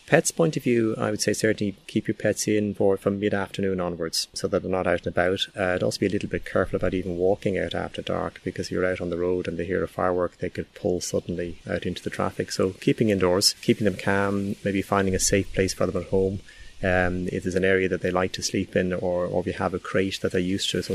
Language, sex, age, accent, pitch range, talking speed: English, male, 30-49, Irish, 90-105 Hz, 270 wpm